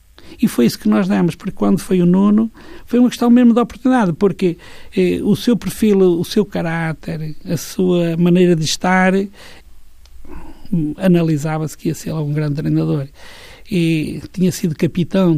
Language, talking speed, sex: Portuguese, 160 wpm, male